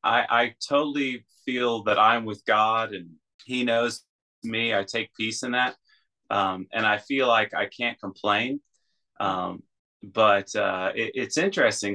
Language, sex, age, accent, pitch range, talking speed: English, male, 30-49, American, 95-115 Hz, 150 wpm